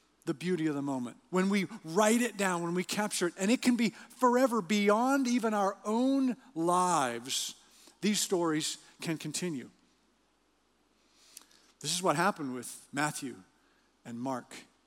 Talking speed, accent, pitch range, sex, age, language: 145 wpm, American, 160-230 Hz, male, 50-69, English